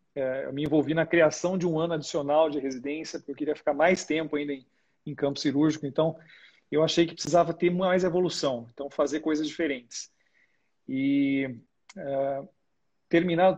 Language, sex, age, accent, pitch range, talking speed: Portuguese, male, 40-59, Brazilian, 145-170 Hz, 170 wpm